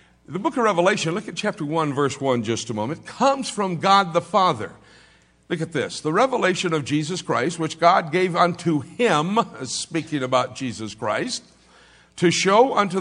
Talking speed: 175 wpm